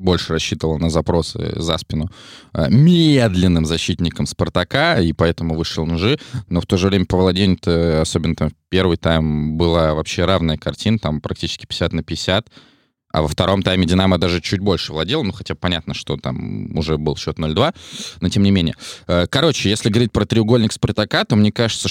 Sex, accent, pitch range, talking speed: male, native, 85-100 Hz, 185 wpm